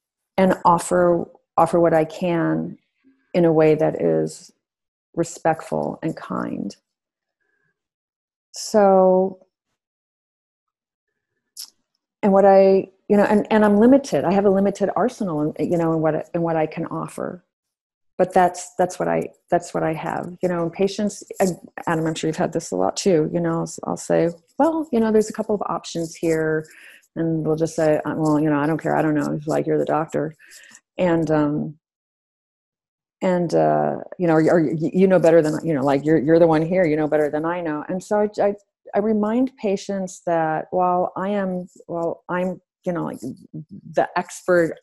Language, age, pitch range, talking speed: English, 30-49, 155-190 Hz, 185 wpm